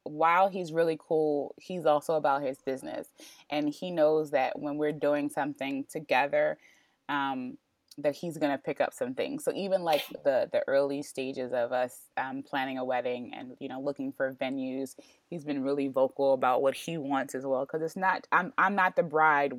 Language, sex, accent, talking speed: English, female, American, 195 wpm